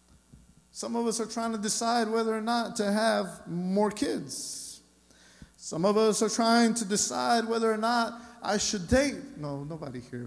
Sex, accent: male, American